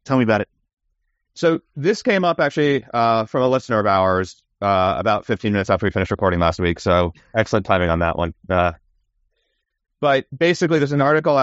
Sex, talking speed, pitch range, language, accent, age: male, 195 wpm, 90-110 Hz, English, American, 30-49